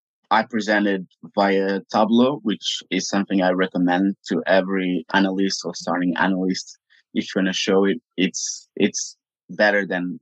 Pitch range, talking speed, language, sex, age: 95-110 Hz, 145 wpm, English, male, 30-49